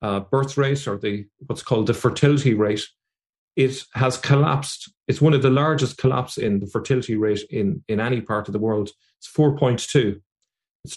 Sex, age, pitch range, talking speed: male, 30-49, 110-135 Hz, 190 wpm